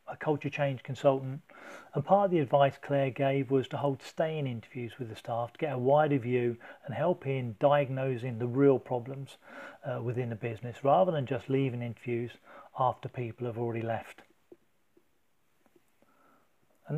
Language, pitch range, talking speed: English, 130-150 Hz, 165 wpm